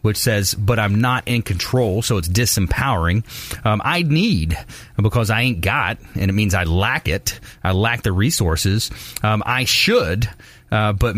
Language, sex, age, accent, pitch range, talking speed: English, male, 30-49, American, 95-120 Hz, 170 wpm